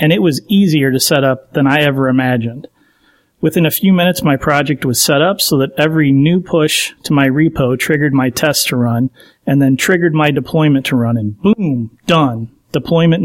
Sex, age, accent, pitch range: male, 40-59, American, 135-165 Hz